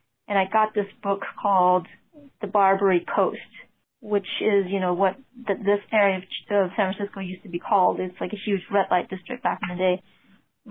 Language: English